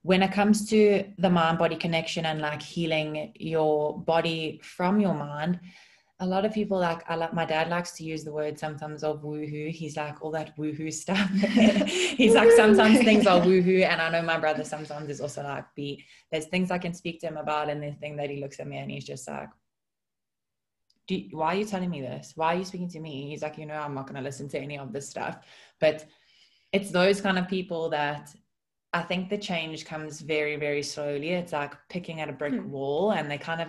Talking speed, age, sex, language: 220 wpm, 20-39, female, English